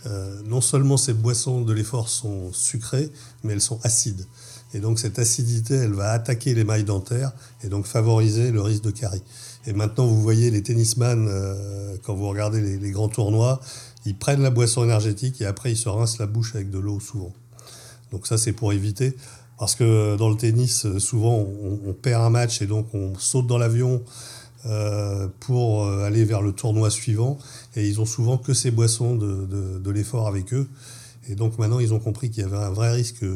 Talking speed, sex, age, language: 205 wpm, male, 50-69, French